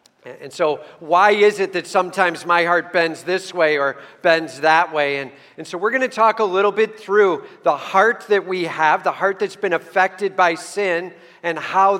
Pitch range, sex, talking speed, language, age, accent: 160-195 Hz, male, 205 wpm, English, 50-69, American